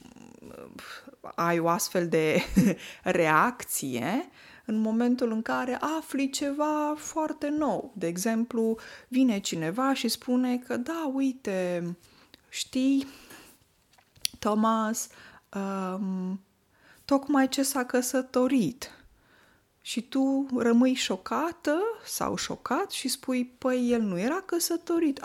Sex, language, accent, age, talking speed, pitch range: female, Romanian, native, 20-39, 95 wpm, 190-275 Hz